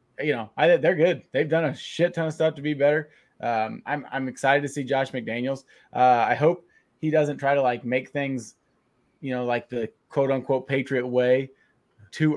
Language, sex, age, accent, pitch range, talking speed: English, male, 20-39, American, 125-160 Hz, 200 wpm